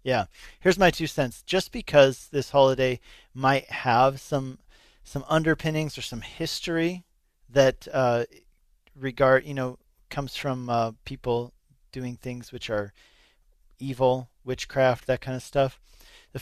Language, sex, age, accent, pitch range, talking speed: English, male, 40-59, American, 120-145 Hz, 135 wpm